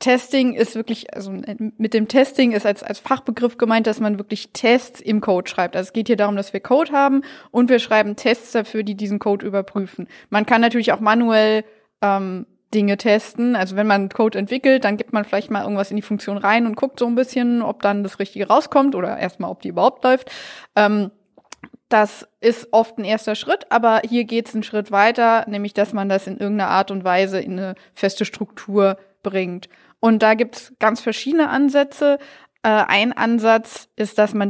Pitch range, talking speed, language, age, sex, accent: 205-245 Hz, 205 wpm, German, 20-39, female, German